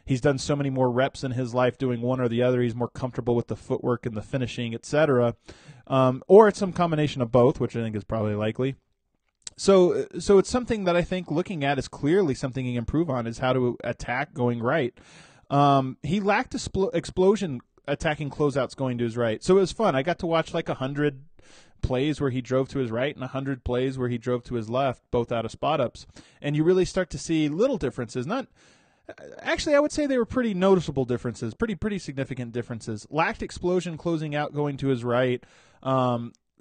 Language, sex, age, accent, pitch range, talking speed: English, male, 20-39, American, 125-160 Hz, 220 wpm